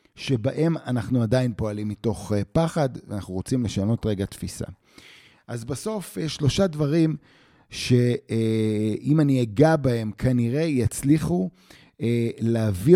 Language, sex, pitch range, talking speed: Hebrew, male, 115-150 Hz, 105 wpm